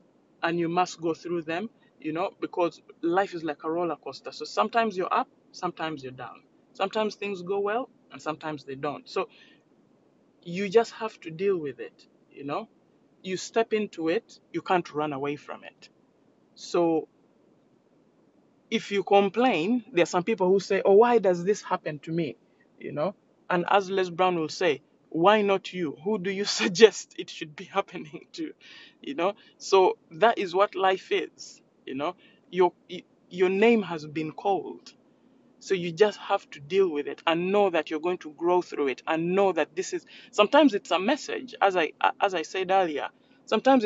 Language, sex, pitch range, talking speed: English, male, 170-235 Hz, 185 wpm